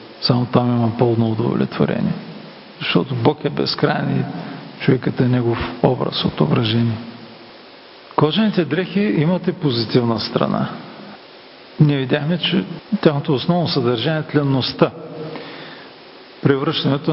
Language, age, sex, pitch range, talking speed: Bulgarian, 40-59, male, 130-160 Hz, 110 wpm